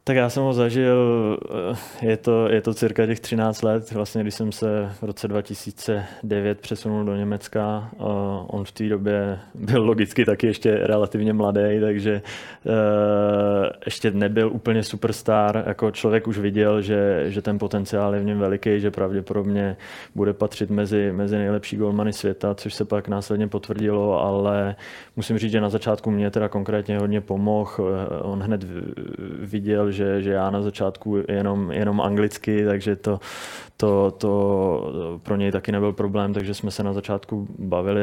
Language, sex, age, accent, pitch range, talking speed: Czech, male, 20-39, native, 100-105 Hz, 160 wpm